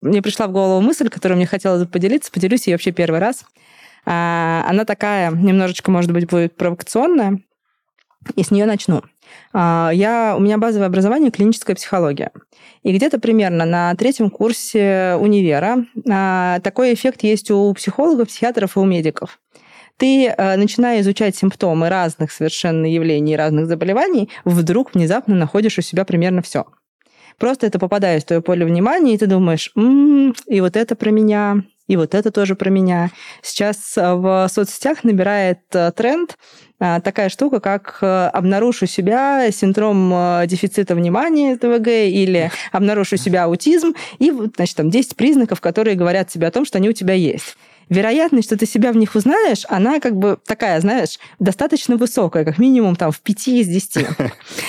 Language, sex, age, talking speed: Russian, female, 20-39, 155 wpm